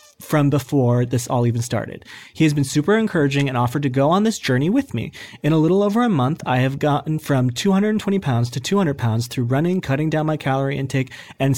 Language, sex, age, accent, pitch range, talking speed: English, male, 30-49, American, 125-170 Hz, 225 wpm